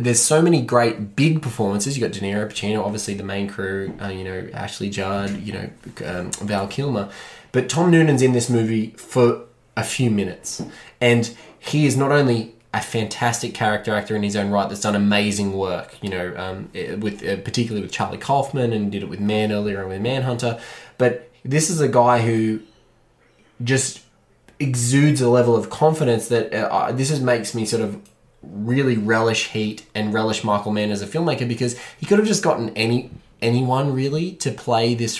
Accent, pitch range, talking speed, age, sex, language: Australian, 105-130 Hz, 190 wpm, 20-39, male, English